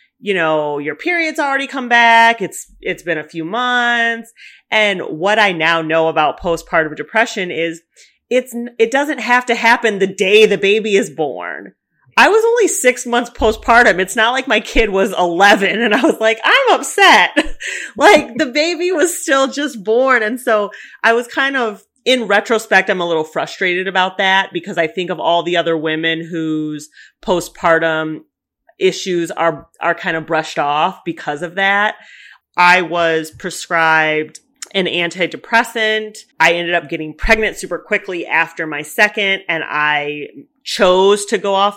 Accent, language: American, English